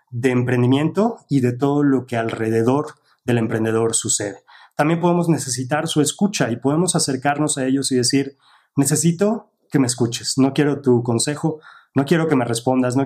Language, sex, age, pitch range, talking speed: English, male, 30-49, 120-145 Hz, 170 wpm